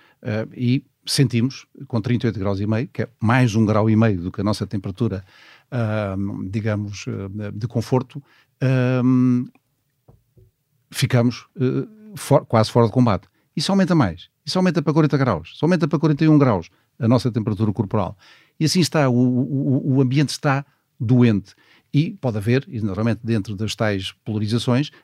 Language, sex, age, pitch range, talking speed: Portuguese, male, 50-69, 110-135 Hz, 165 wpm